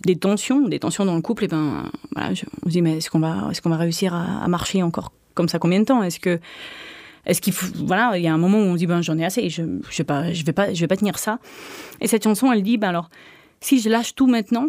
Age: 30-49